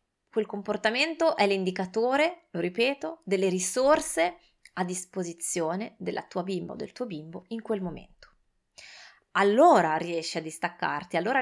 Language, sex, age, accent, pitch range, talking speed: Italian, female, 20-39, native, 180-235 Hz, 130 wpm